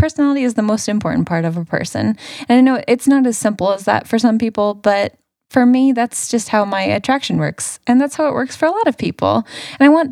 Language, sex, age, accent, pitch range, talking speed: English, female, 10-29, American, 175-270 Hz, 255 wpm